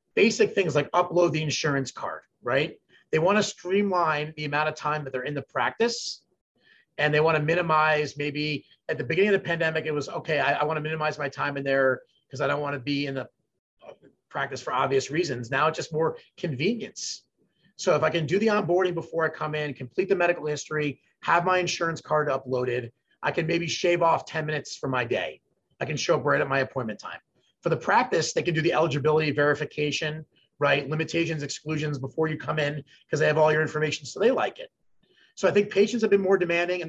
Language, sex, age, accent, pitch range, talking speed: English, male, 30-49, American, 145-180 Hz, 220 wpm